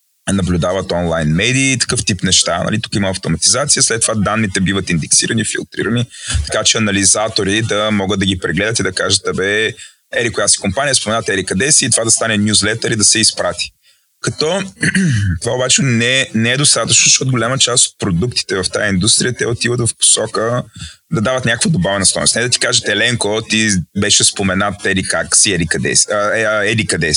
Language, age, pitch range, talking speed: Bulgarian, 20-39, 100-120 Hz, 195 wpm